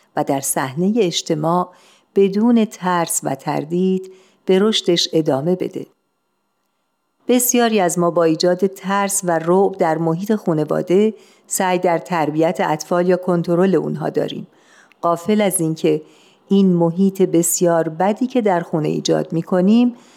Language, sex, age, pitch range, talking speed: Persian, female, 50-69, 165-200 Hz, 130 wpm